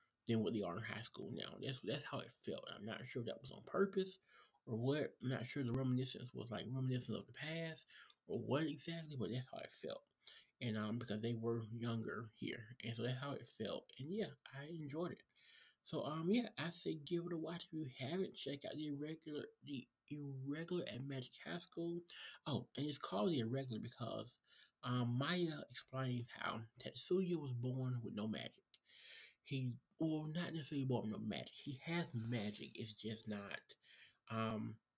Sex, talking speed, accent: male, 190 wpm, American